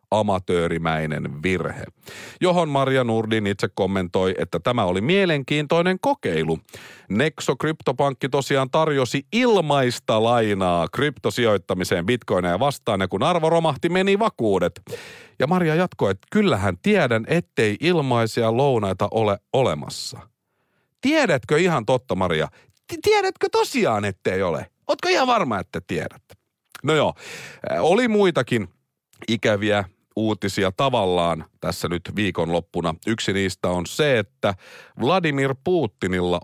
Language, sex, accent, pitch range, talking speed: Finnish, male, native, 95-150 Hz, 115 wpm